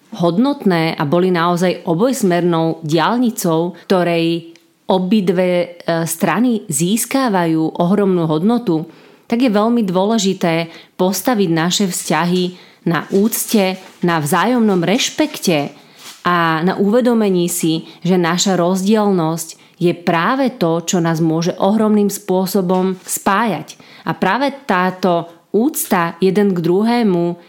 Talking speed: 105 wpm